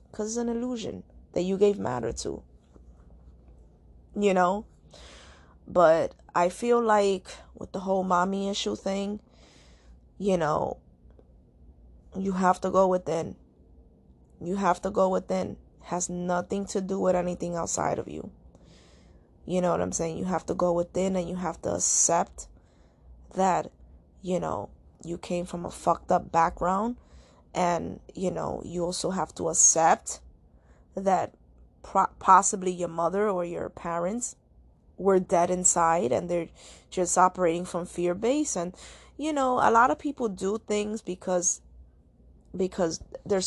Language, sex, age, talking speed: English, female, 20-39, 145 wpm